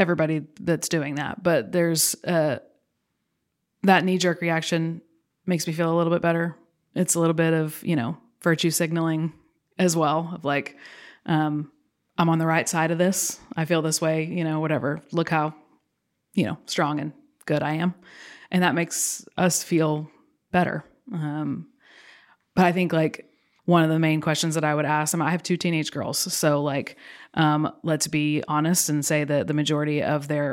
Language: English